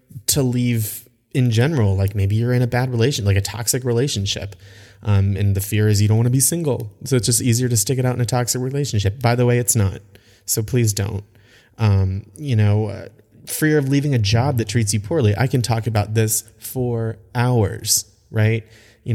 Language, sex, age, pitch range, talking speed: English, male, 30-49, 105-125 Hz, 215 wpm